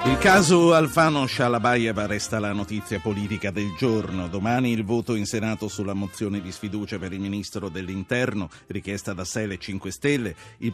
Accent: native